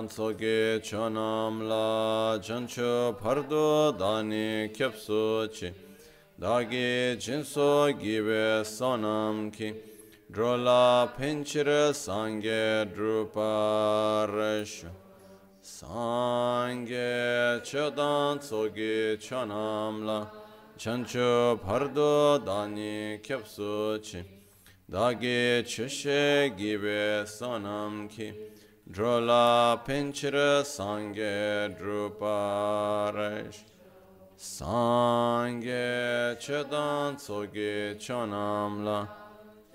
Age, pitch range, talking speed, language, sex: 30-49, 105-120 Hz, 40 wpm, Italian, male